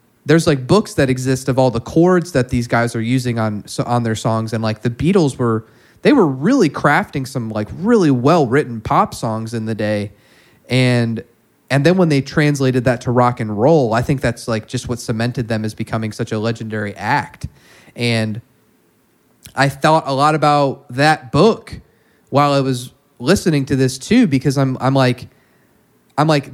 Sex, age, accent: male, 20-39, American